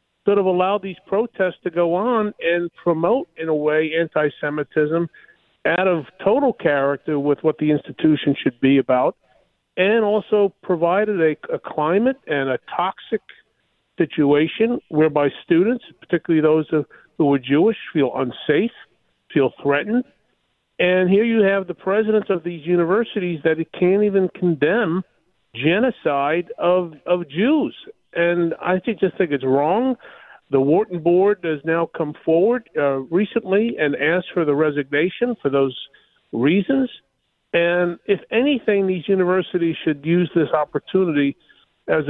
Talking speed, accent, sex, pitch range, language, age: 140 wpm, American, male, 150-195 Hz, English, 50-69